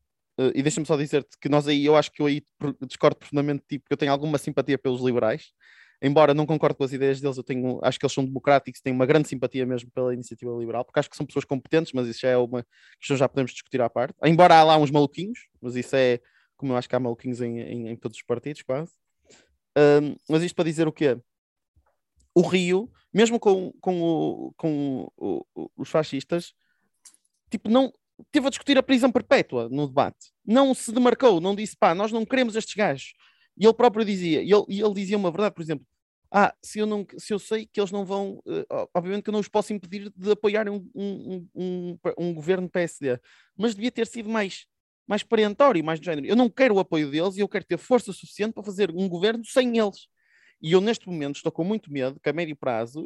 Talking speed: 230 wpm